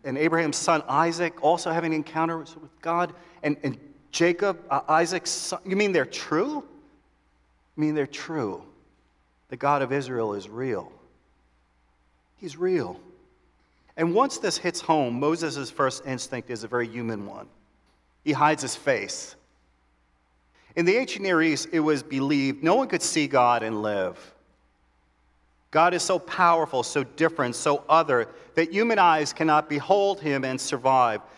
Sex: male